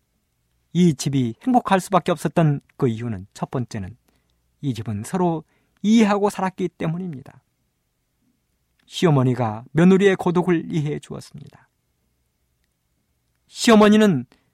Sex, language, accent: male, Korean, native